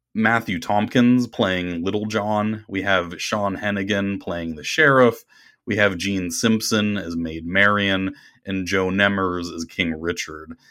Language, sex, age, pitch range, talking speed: English, male, 30-49, 85-110 Hz, 140 wpm